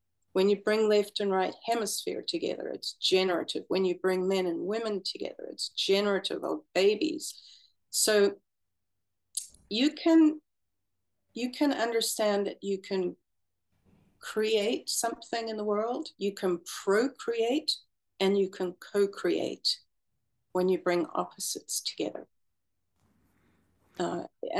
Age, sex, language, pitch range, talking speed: 50-69, female, English, 175-220 Hz, 115 wpm